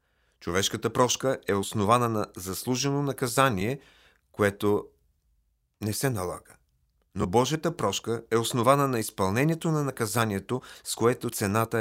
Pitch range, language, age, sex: 95-130 Hz, Bulgarian, 40-59, male